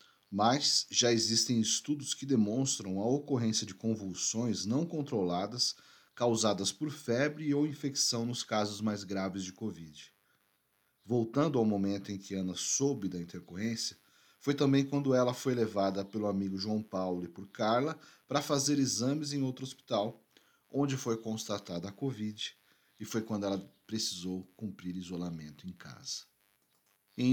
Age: 40-59